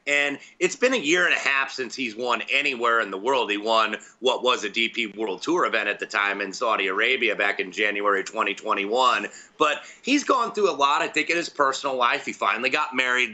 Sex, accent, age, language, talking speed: male, American, 30-49, English, 225 wpm